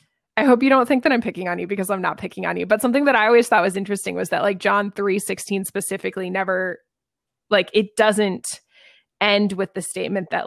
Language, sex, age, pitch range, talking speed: English, female, 20-39, 185-230 Hz, 230 wpm